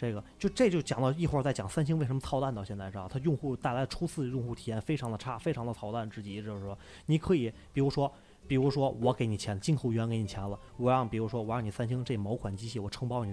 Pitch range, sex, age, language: 115-155 Hz, male, 20-39, Chinese